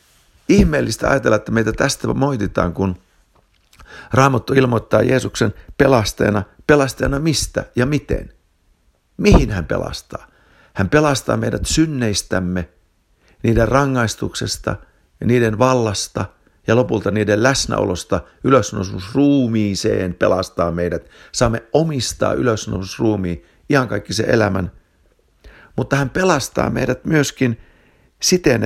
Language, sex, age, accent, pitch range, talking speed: Finnish, male, 60-79, native, 85-135 Hz, 100 wpm